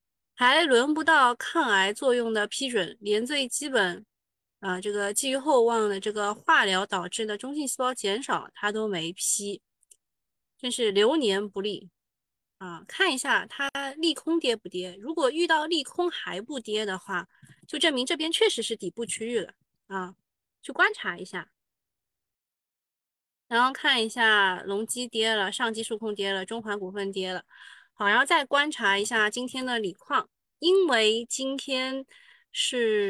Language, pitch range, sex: Chinese, 200-280 Hz, female